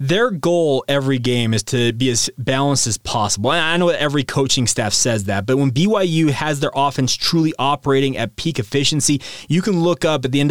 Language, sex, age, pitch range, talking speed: English, male, 20-39, 130-155 Hz, 205 wpm